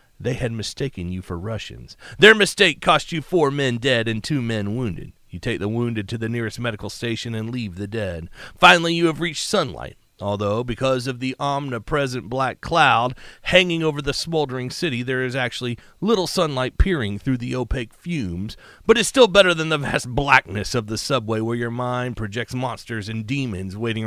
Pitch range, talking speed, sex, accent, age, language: 110-160 Hz, 190 wpm, male, American, 40-59, English